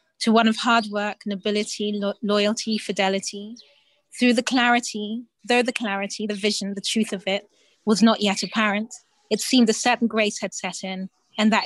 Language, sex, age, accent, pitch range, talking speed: English, female, 20-39, British, 205-230 Hz, 175 wpm